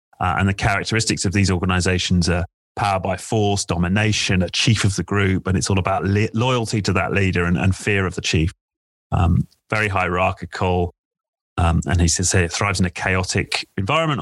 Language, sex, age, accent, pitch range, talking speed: English, male, 30-49, British, 90-110 Hz, 195 wpm